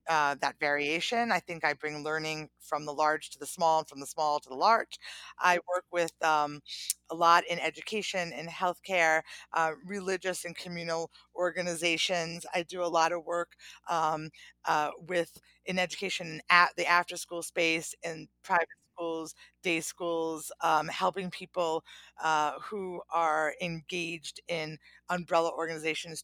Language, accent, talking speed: English, American, 150 wpm